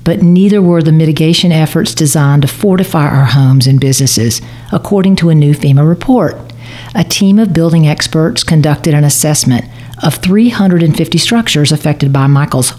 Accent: American